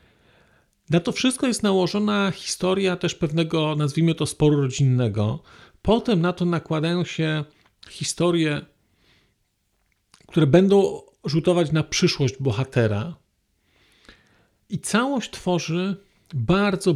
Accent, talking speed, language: native, 100 wpm, Polish